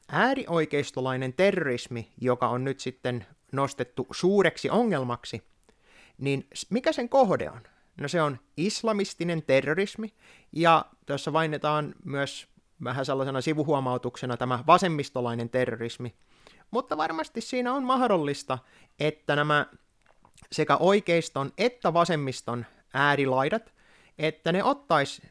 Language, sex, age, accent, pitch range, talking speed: Finnish, male, 30-49, native, 125-180 Hz, 105 wpm